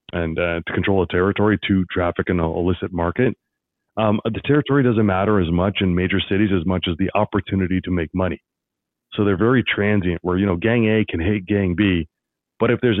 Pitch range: 90-110 Hz